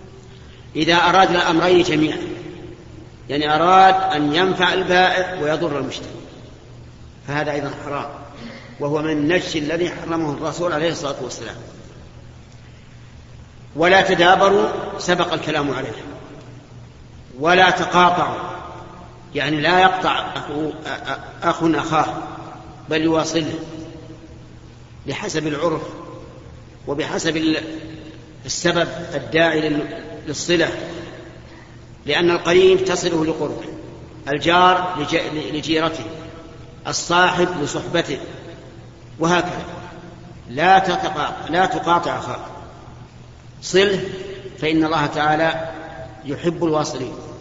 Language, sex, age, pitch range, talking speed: Arabic, male, 50-69, 150-175 Hz, 80 wpm